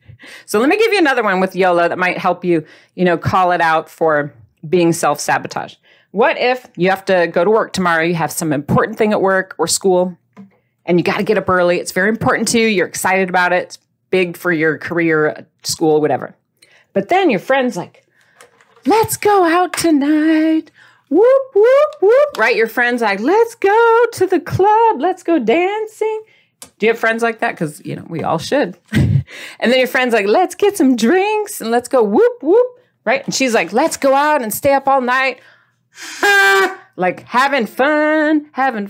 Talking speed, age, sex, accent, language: 195 wpm, 40-59, female, American, English